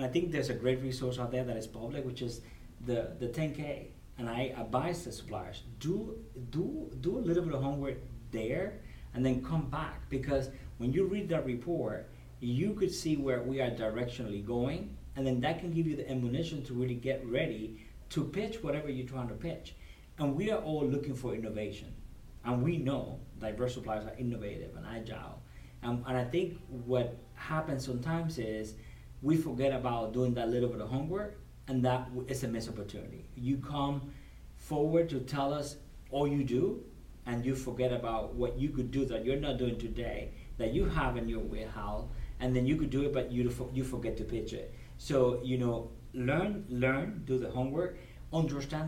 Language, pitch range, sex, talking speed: English, 115-140 Hz, male, 190 wpm